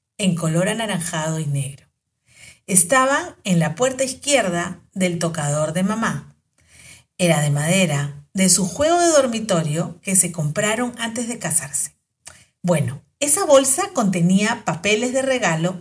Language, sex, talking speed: Spanish, female, 135 wpm